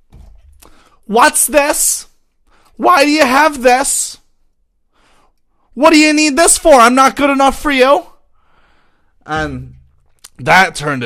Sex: male